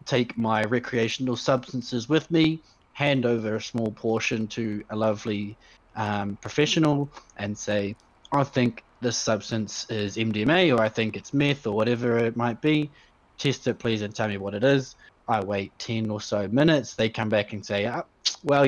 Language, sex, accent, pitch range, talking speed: English, male, Australian, 105-125 Hz, 175 wpm